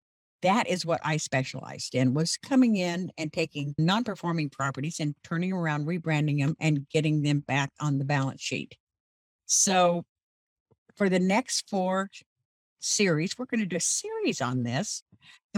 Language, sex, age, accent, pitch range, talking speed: English, female, 60-79, American, 155-225 Hz, 160 wpm